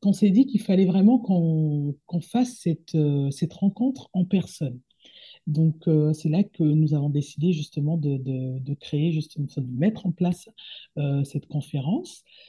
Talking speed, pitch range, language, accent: 175 wpm, 150-200 Hz, French, French